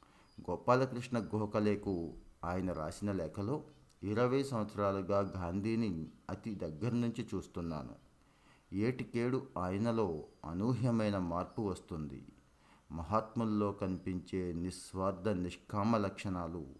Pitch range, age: 85-110 Hz, 50-69